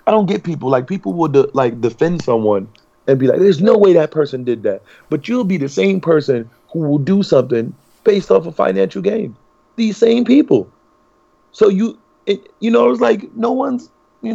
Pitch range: 120-185 Hz